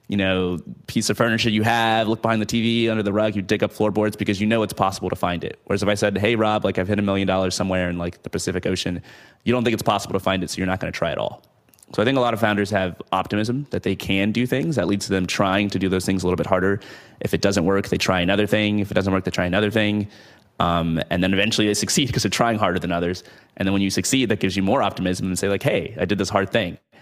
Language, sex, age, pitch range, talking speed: English, male, 20-39, 90-105 Hz, 300 wpm